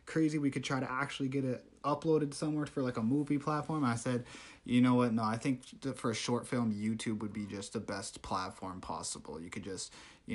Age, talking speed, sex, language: 20-39, 225 wpm, male, English